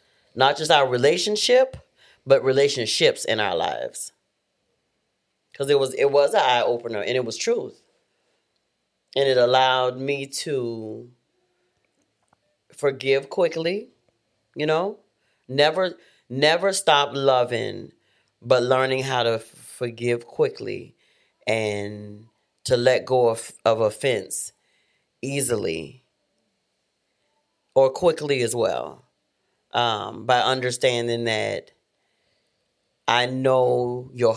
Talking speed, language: 100 wpm, English